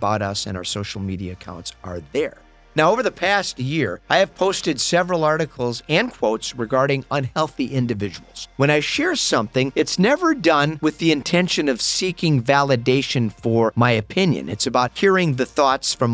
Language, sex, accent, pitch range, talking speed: English, male, American, 125-190 Hz, 170 wpm